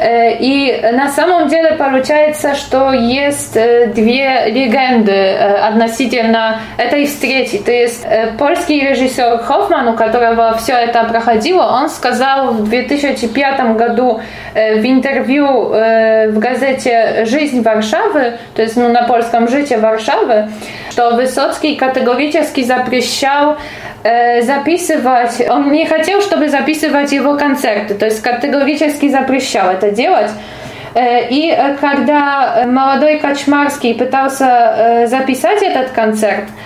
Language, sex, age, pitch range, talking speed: Russian, female, 20-39, 235-285 Hz, 110 wpm